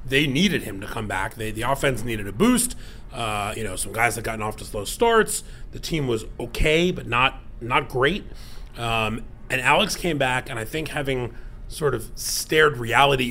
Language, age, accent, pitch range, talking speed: English, 30-49, American, 115-145 Hz, 200 wpm